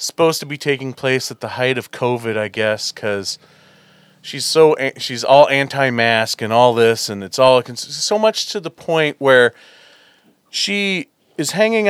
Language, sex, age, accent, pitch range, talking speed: English, male, 40-59, American, 125-170 Hz, 165 wpm